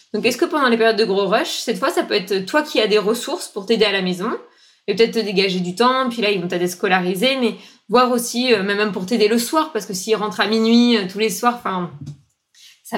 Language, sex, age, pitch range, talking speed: French, female, 20-39, 195-235 Hz, 260 wpm